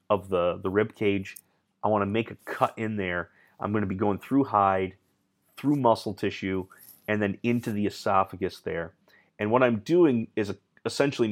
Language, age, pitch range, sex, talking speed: English, 30-49, 95-110 Hz, male, 180 wpm